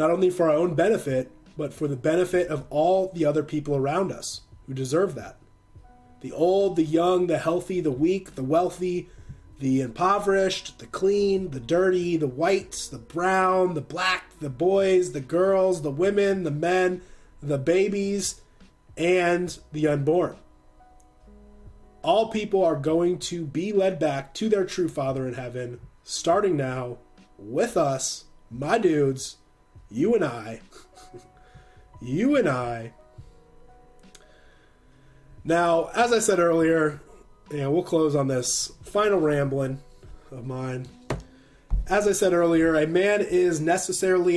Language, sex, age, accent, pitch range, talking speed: English, male, 30-49, American, 135-180 Hz, 140 wpm